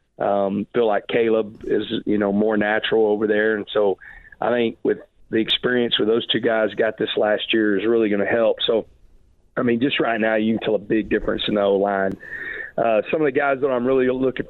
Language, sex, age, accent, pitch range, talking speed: English, male, 40-59, American, 105-115 Hz, 230 wpm